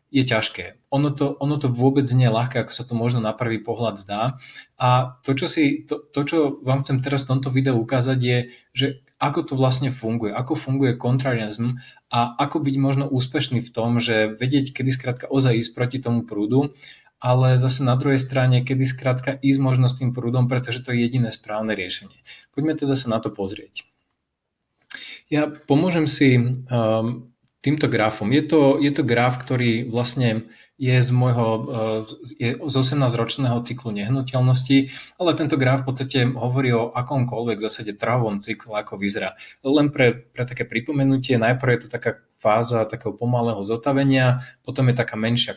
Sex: male